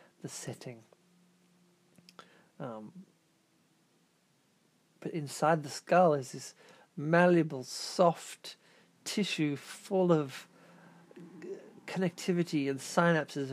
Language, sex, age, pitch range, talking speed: English, male, 50-69, 150-190 Hz, 80 wpm